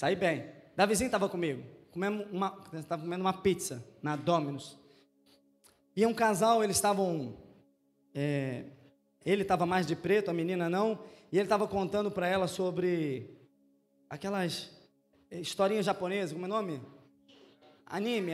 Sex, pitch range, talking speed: male, 150-225 Hz, 130 wpm